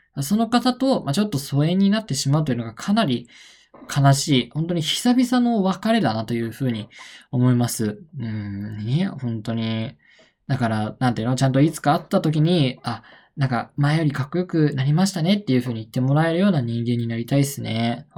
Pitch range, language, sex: 120-175 Hz, Japanese, male